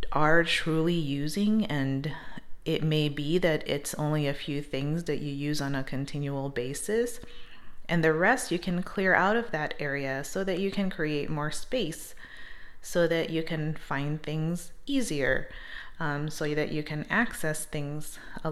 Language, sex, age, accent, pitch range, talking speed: English, female, 30-49, American, 145-180 Hz, 170 wpm